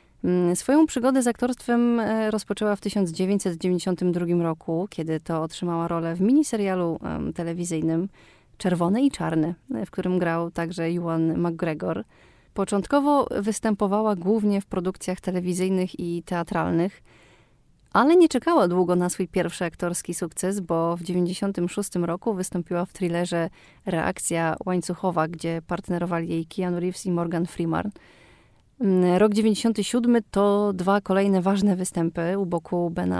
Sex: female